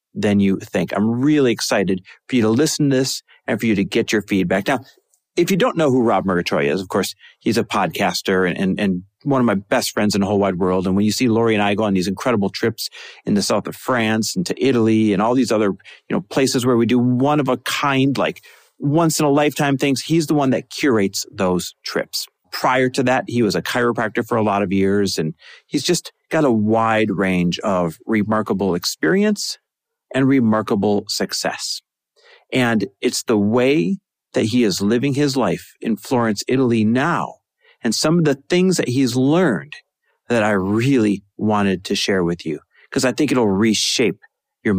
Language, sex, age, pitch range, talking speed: English, male, 40-59, 100-135 Hz, 205 wpm